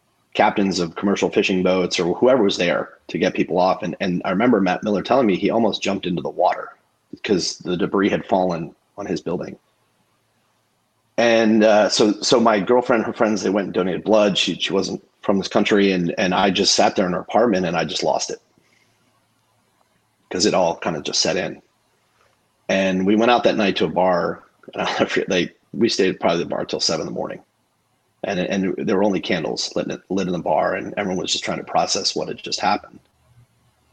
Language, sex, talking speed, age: English, male, 210 wpm, 30-49